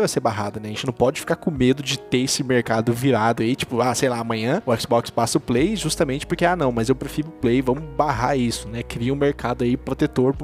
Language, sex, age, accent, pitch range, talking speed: Portuguese, male, 20-39, Brazilian, 120-150 Hz, 265 wpm